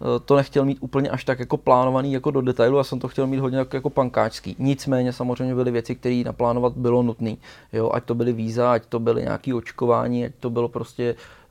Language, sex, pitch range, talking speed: Czech, male, 115-130 Hz, 220 wpm